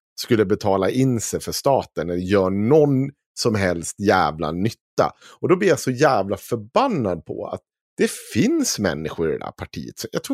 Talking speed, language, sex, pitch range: 180 wpm, Swedish, male, 120-195 Hz